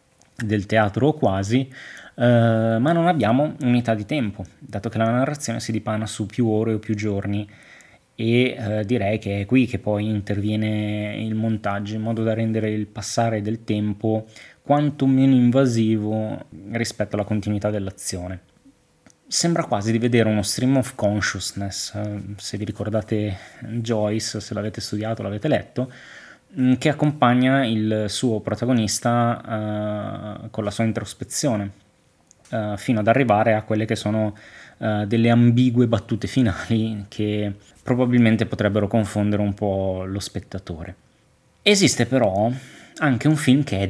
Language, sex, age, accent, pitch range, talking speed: Italian, male, 20-39, native, 105-120 Hz, 140 wpm